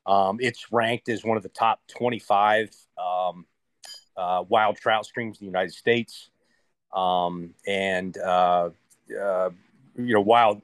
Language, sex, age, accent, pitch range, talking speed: English, male, 40-59, American, 95-120 Hz, 140 wpm